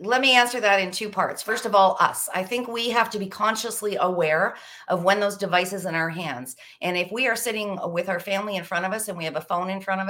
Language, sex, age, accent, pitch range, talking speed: English, female, 40-59, American, 170-220 Hz, 275 wpm